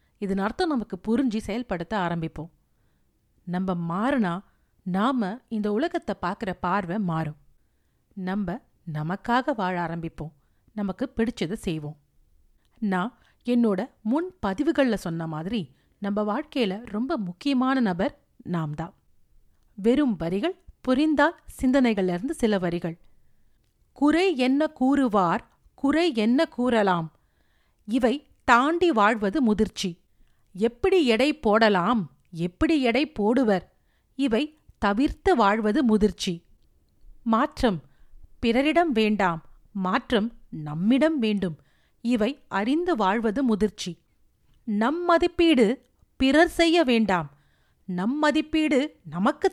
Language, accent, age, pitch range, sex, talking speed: Tamil, native, 40-59, 185-265 Hz, female, 90 wpm